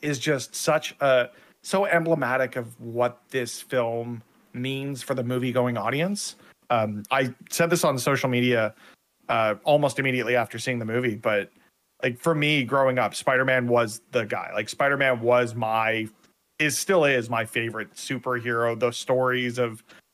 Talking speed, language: 160 wpm, English